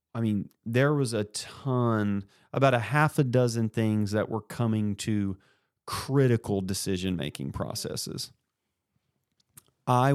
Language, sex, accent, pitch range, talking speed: English, male, American, 100-115 Hz, 120 wpm